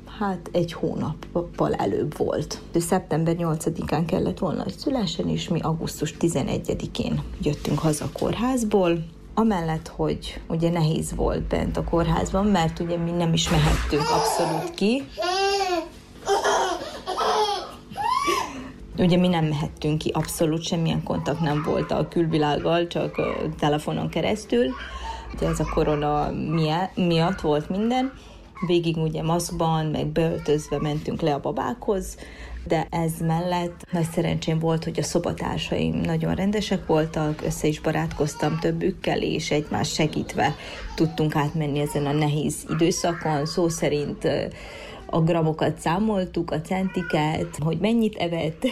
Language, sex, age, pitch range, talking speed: Hungarian, female, 30-49, 155-185 Hz, 125 wpm